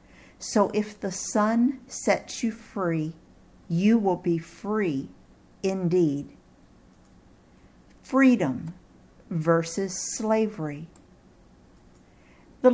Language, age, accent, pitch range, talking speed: English, 50-69, American, 170-245 Hz, 75 wpm